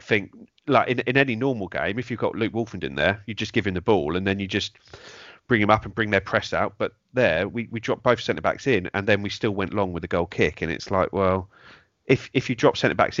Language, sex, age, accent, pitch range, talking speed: English, male, 30-49, British, 95-110 Hz, 270 wpm